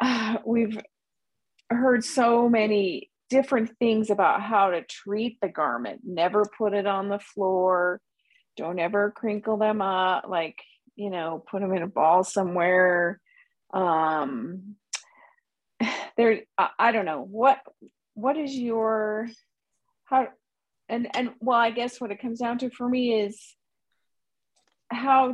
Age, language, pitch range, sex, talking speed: 40-59, English, 185-235 Hz, female, 135 wpm